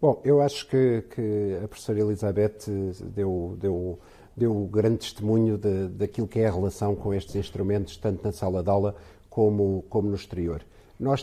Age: 50-69